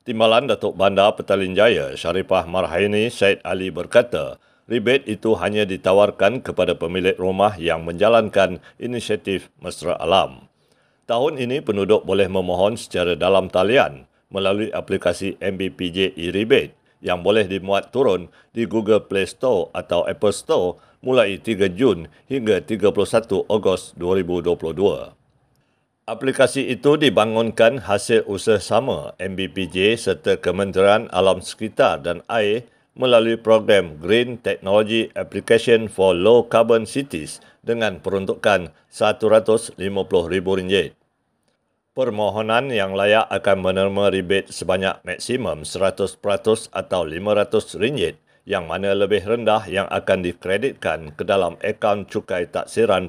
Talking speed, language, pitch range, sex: 115 wpm, Malay, 95-110 Hz, male